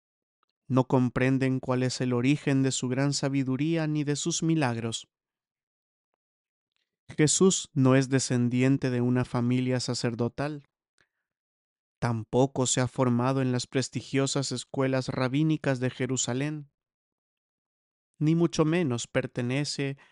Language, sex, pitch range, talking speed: English, male, 125-145 Hz, 110 wpm